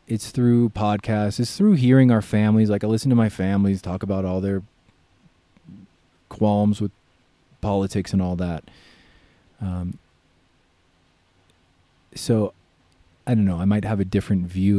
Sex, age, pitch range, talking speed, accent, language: male, 30-49, 95-130 Hz, 140 wpm, American, English